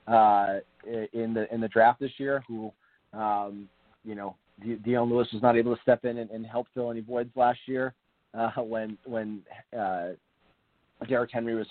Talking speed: 180 wpm